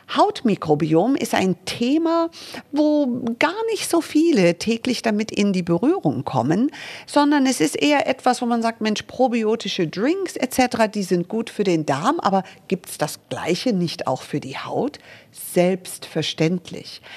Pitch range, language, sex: 160-240 Hz, German, female